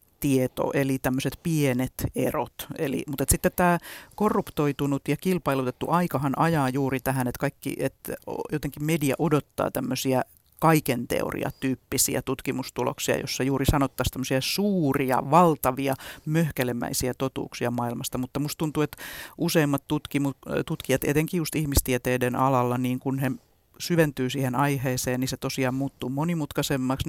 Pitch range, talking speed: 130-150 Hz, 125 wpm